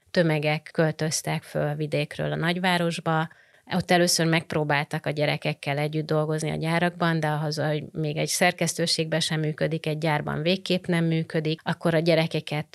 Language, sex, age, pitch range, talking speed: Hungarian, female, 30-49, 155-175 Hz, 150 wpm